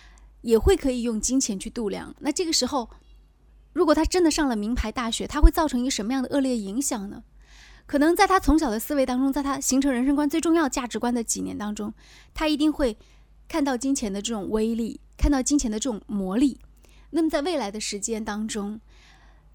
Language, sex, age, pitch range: Chinese, female, 20-39, 220-300 Hz